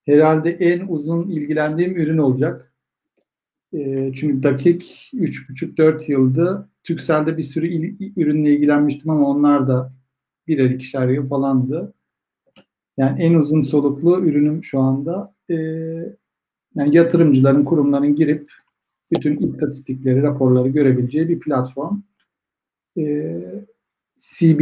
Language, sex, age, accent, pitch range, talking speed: Turkish, male, 60-79, native, 135-170 Hz, 110 wpm